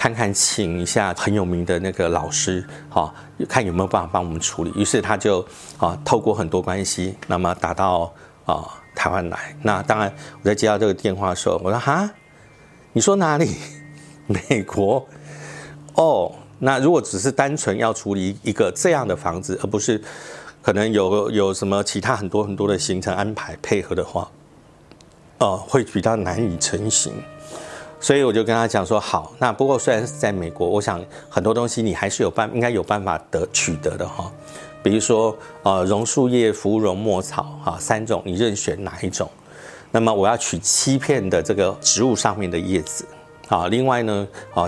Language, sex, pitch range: Chinese, male, 95-120 Hz